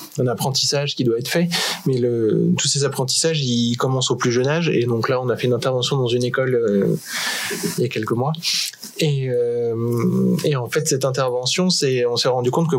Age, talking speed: 20-39, 220 wpm